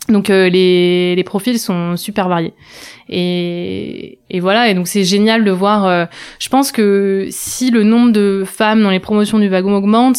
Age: 20-39